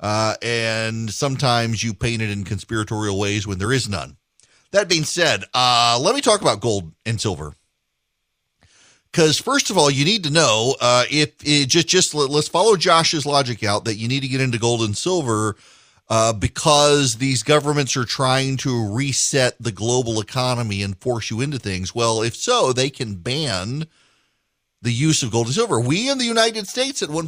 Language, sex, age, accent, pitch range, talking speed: English, male, 40-59, American, 110-160 Hz, 190 wpm